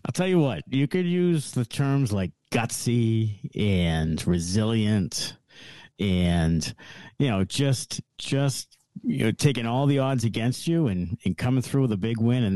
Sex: male